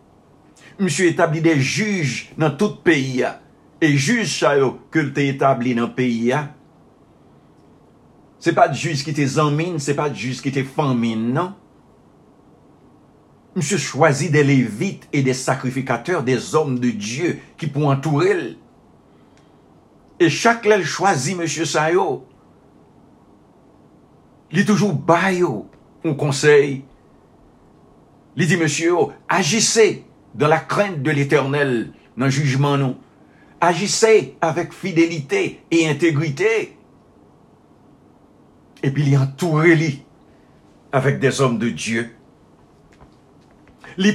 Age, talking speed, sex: 60-79, 115 wpm, male